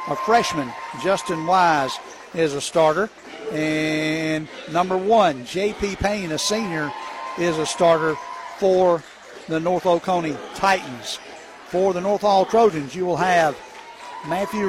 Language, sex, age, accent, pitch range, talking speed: English, male, 60-79, American, 165-210 Hz, 125 wpm